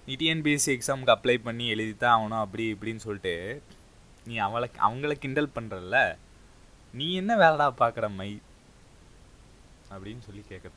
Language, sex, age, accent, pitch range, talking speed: Tamil, male, 20-39, native, 95-115 Hz, 130 wpm